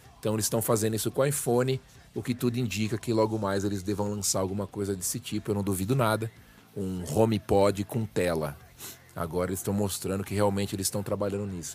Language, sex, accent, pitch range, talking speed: Portuguese, male, Brazilian, 95-120 Hz, 205 wpm